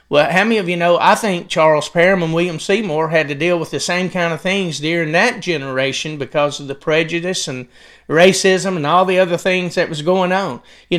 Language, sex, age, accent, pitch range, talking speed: English, male, 40-59, American, 160-200 Hz, 225 wpm